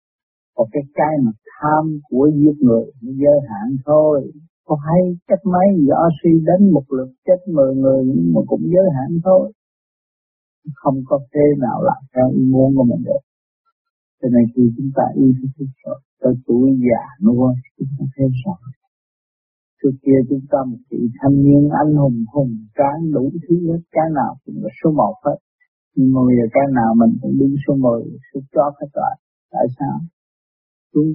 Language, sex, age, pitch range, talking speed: Vietnamese, male, 50-69, 130-165 Hz, 170 wpm